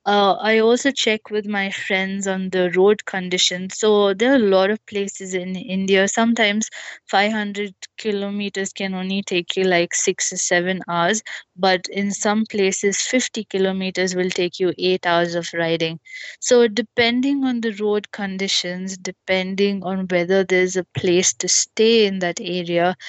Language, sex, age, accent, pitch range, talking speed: English, female, 20-39, Indian, 185-210 Hz, 160 wpm